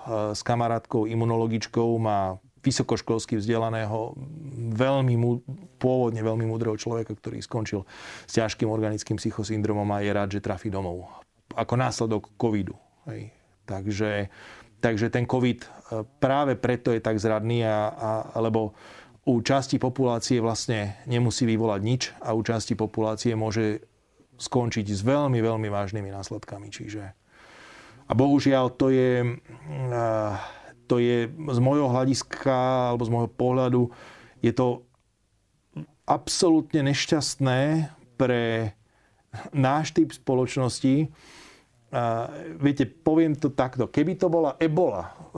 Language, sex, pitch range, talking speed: Slovak, male, 110-130 Hz, 115 wpm